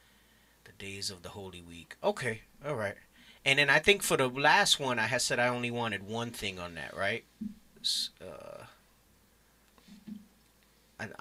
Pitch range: 100-135 Hz